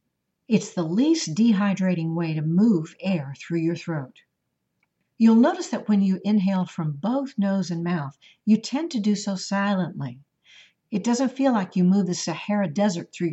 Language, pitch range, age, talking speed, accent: English, 165-225 Hz, 60-79, 170 wpm, American